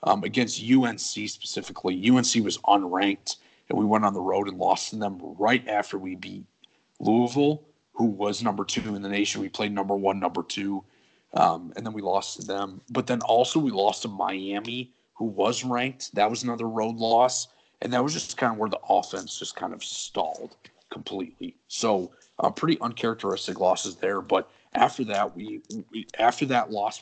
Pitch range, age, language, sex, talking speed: 100-120 Hz, 40-59, English, male, 190 wpm